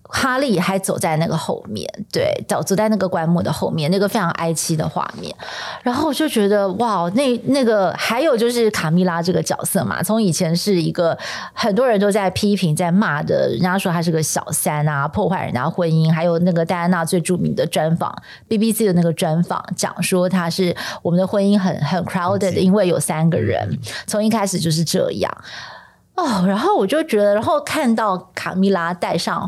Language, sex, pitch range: Chinese, female, 170-220 Hz